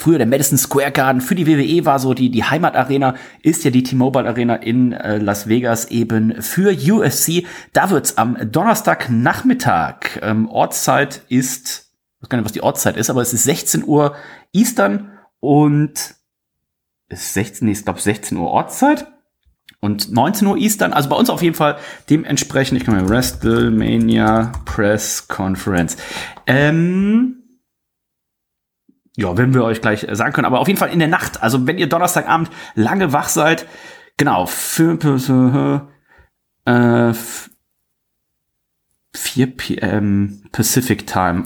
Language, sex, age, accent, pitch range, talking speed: German, male, 30-49, German, 115-165 Hz, 150 wpm